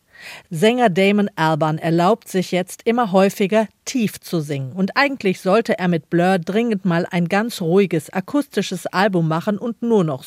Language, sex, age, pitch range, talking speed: German, female, 40-59, 170-225 Hz, 165 wpm